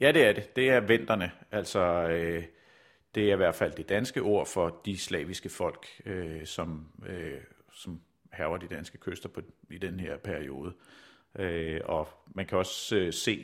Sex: male